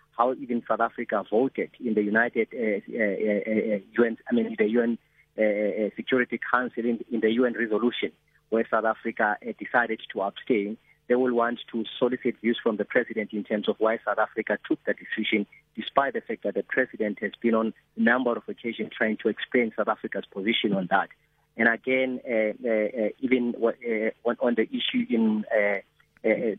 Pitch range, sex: 110-125 Hz, male